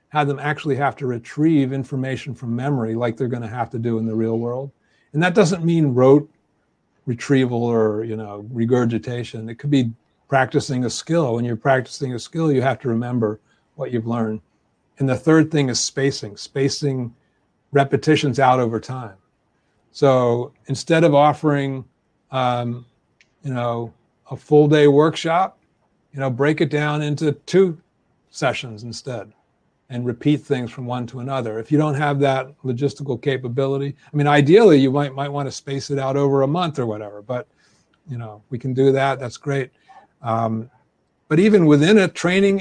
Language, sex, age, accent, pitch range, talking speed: English, male, 40-59, American, 120-145 Hz, 175 wpm